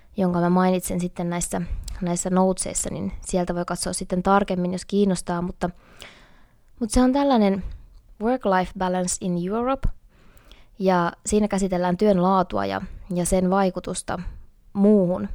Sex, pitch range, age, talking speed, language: female, 180-210 Hz, 20-39, 135 wpm, Finnish